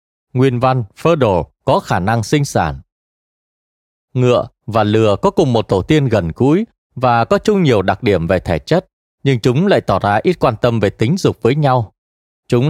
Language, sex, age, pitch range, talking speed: Vietnamese, male, 20-39, 105-150 Hz, 195 wpm